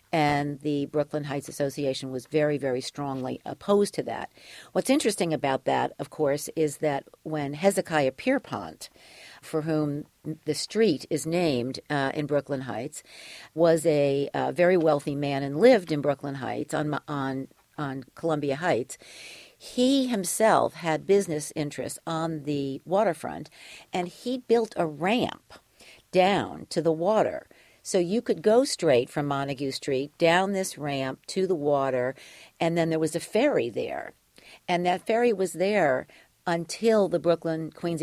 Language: English